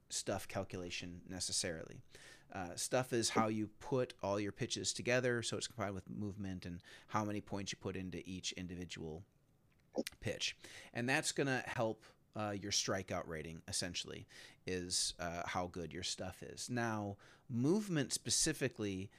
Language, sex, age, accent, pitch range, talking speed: English, male, 30-49, American, 95-115 Hz, 145 wpm